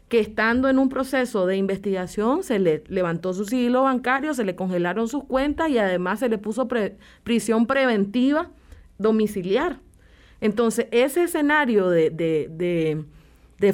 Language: Spanish